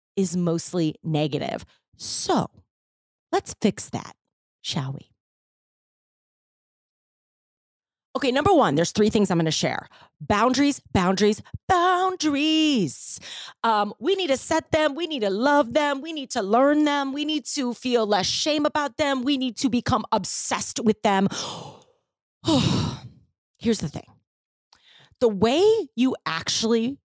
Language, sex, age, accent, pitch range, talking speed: English, female, 30-49, American, 170-260 Hz, 130 wpm